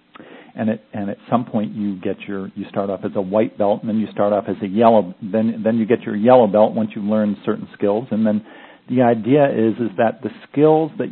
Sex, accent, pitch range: male, American, 95-115 Hz